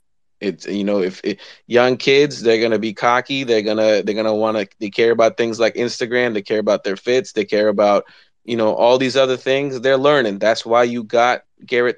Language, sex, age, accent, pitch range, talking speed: English, male, 20-39, American, 105-130 Hz, 235 wpm